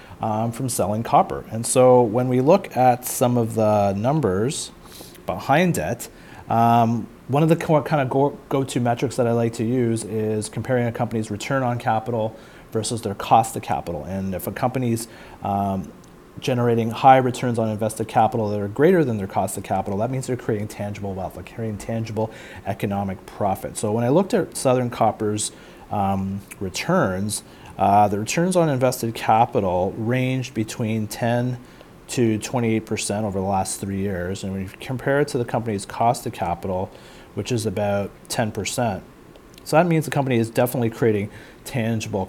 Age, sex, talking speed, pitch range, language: 30-49, male, 175 wpm, 105-125 Hz, English